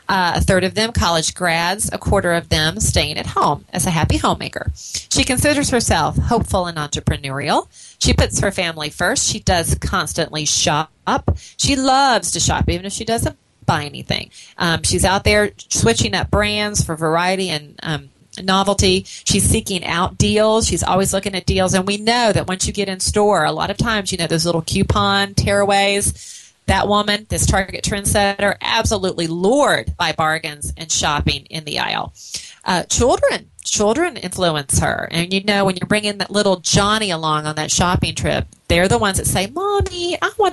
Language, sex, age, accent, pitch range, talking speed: English, female, 30-49, American, 165-210 Hz, 185 wpm